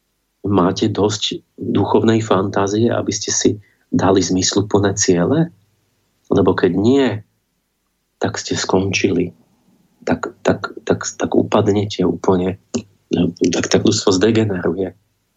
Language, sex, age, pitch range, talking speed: Slovak, male, 30-49, 95-115 Hz, 100 wpm